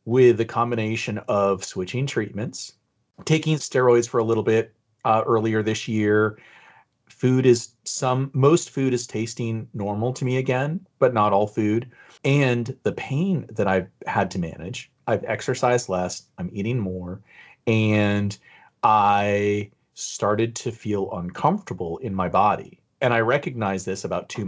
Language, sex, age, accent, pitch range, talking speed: English, male, 30-49, American, 100-120 Hz, 145 wpm